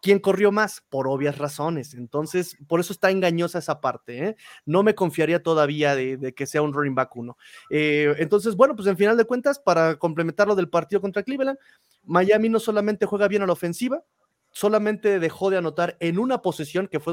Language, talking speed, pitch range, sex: Spanish, 205 wpm, 145-200 Hz, male